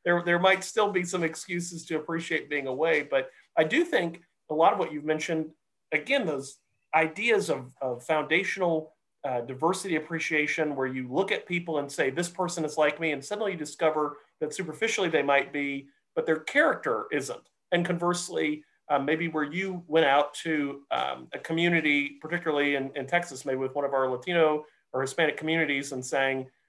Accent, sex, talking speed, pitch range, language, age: American, male, 185 wpm, 135-170 Hz, English, 40-59